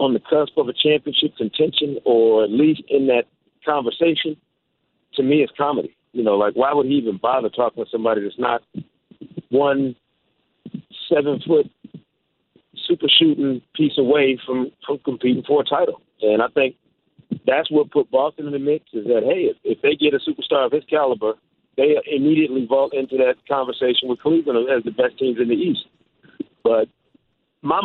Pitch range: 120-150 Hz